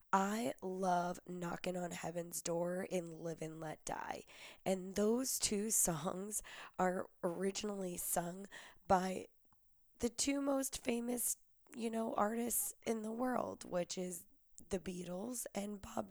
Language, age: English, 10-29